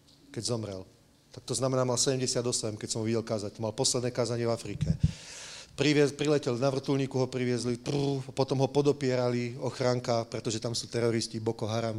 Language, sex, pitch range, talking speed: English, male, 115-135 Hz, 165 wpm